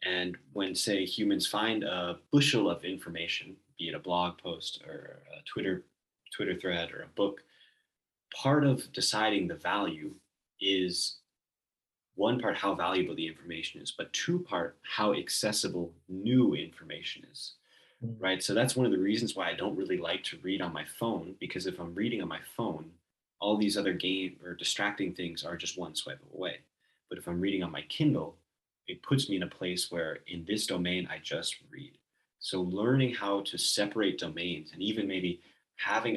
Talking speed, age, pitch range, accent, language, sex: 180 wpm, 30-49, 85-100 Hz, American, English, male